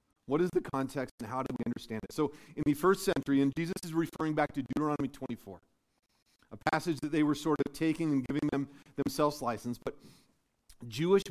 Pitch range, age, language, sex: 135-165 Hz, 40-59, English, male